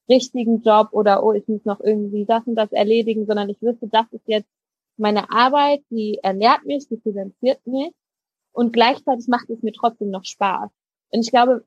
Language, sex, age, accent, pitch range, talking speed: German, female, 20-39, German, 210-255 Hz, 190 wpm